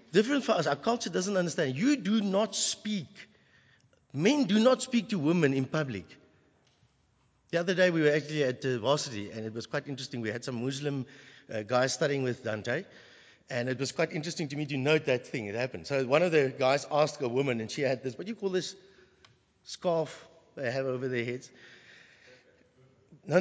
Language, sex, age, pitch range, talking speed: English, male, 60-79, 130-190 Hz, 205 wpm